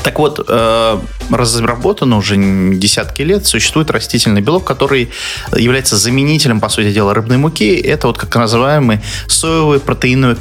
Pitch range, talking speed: 100-125 Hz, 135 wpm